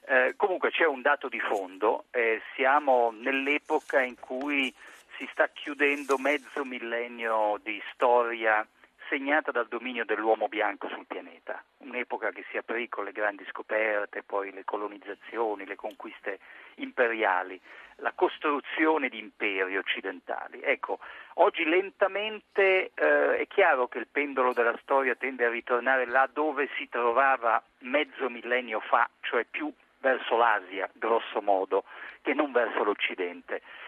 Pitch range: 120-195 Hz